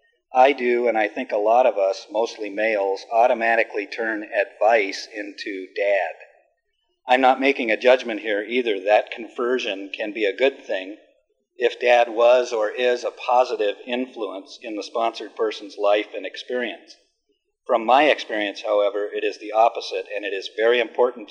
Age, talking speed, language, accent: 50-69, 165 wpm, English, American